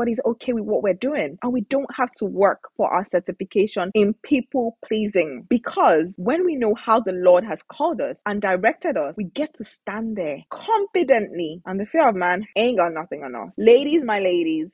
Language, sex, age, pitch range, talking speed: English, female, 20-39, 180-255 Hz, 205 wpm